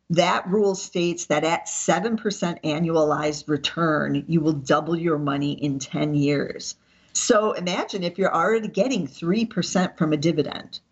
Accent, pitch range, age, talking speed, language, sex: American, 160-200 Hz, 50-69, 145 wpm, English, female